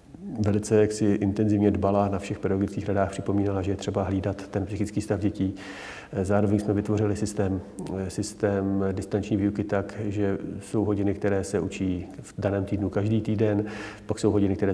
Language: Czech